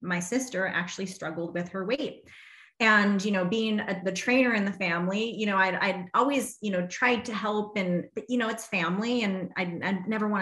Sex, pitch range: female, 180-210 Hz